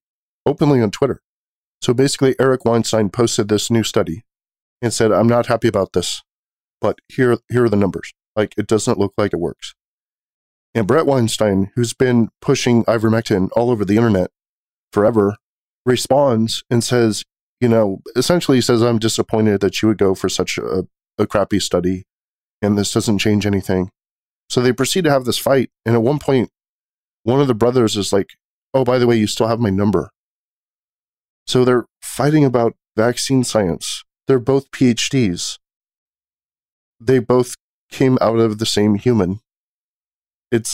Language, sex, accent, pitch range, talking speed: English, male, American, 105-125 Hz, 165 wpm